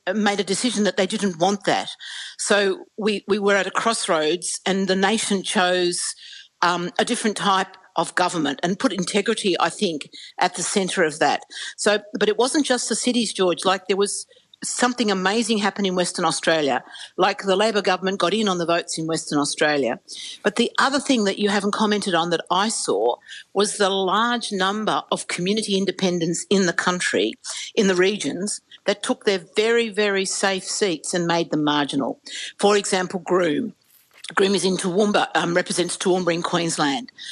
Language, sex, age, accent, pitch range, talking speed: English, female, 50-69, Australian, 175-210 Hz, 180 wpm